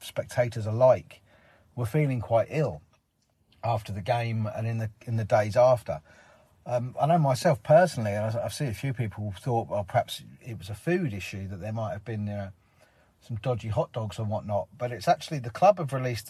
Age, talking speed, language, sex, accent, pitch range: 40-59, 200 wpm, English, male, British, 105-125 Hz